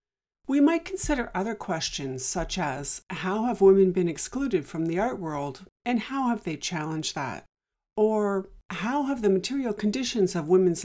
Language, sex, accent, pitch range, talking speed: English, female, American, 170-235 Hz, 165 wpm